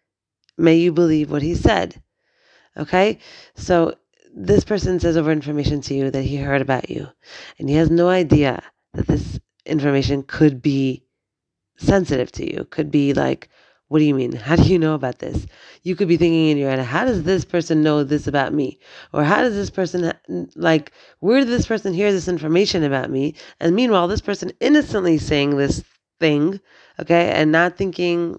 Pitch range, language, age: 155-185 Hz, English, 30-49